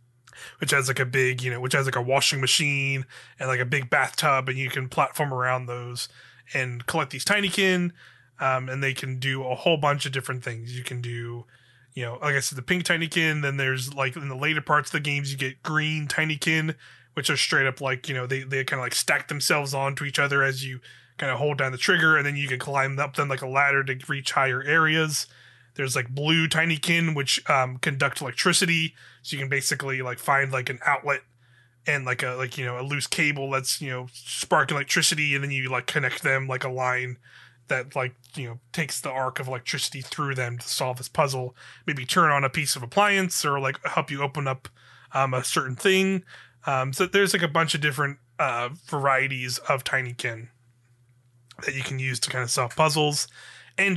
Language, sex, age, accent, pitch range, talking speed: English, male, 20-39, American, 130-150 Hz, 225 wpm